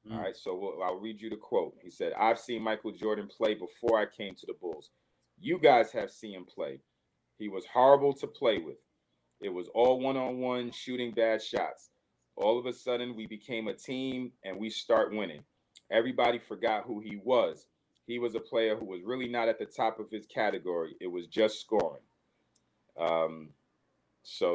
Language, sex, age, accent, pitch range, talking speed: English, male, 40-59, American, 90-120 Hz, 190 wpm